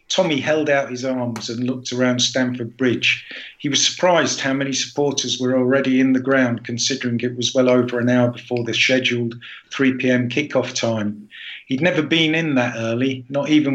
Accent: British